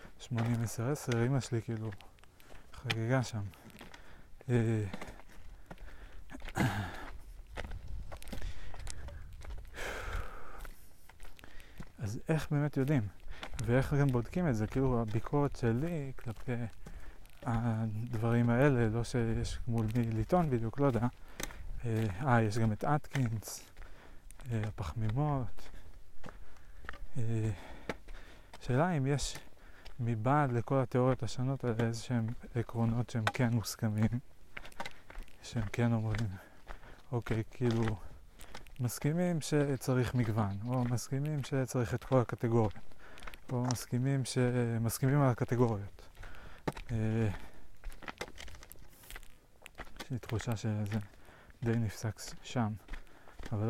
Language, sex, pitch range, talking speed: Hebrew, male, 105-125 Hz, 90 wpm